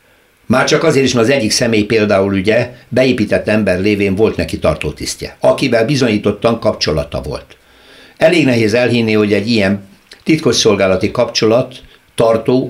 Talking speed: 140 wpm